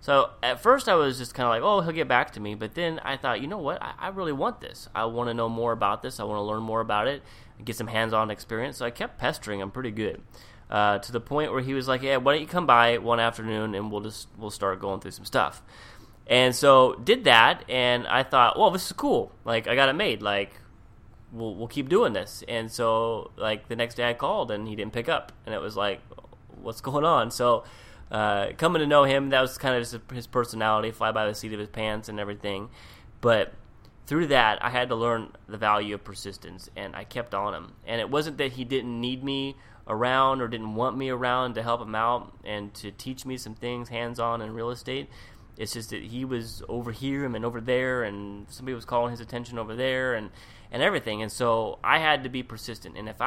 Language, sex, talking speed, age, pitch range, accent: English, male, 240 wpm, 20-39, 110-125 Hz, American